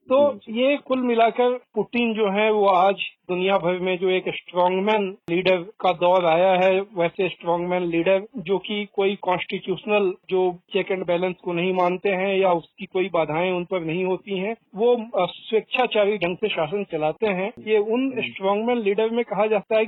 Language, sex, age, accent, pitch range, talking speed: Hindi, male, 40-59, native, 185-215 Hz, 180 wpm